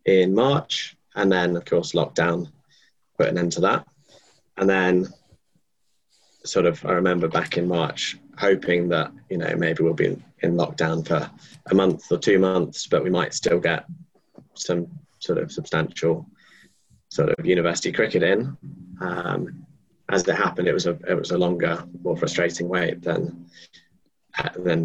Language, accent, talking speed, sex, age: English, British, 160 wpm, male, 20-39